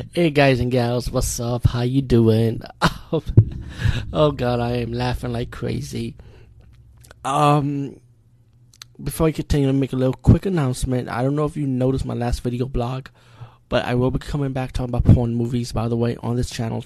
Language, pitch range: English, 115-130 Hz